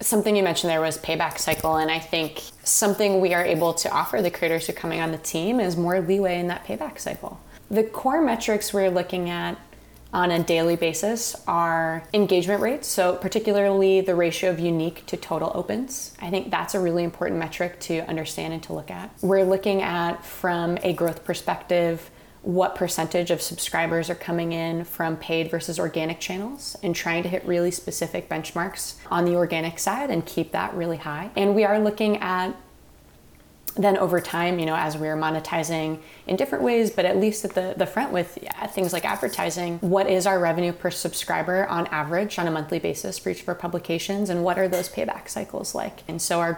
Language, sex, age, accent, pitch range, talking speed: English, female, 20-39, American, 165-190 Hz, 200 wpm